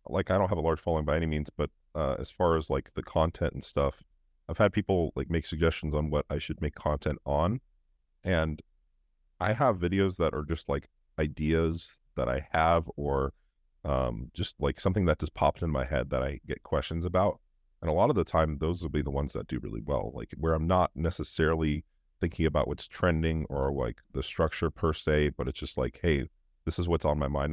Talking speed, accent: 220 wpm, American